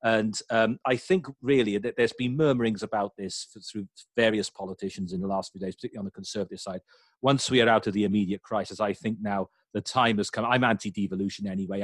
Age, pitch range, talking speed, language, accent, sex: 40-59, 95-115 Hz, 215 wpm, English, British, male